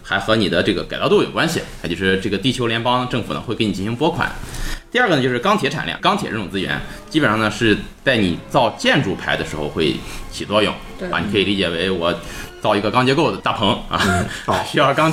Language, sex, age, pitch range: Chinese, male, 20-39, 95-130 Hz